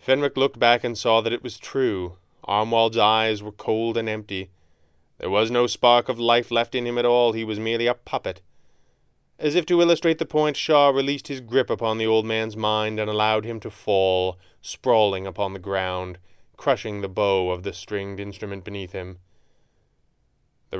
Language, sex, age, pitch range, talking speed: English, male, 20-39, 95-120 Hz, 190 wpm